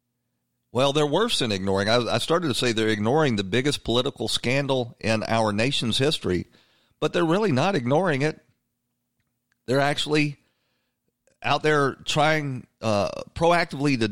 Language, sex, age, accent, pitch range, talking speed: English, male, 40-59, American, 110-140 Hz, 145 wpm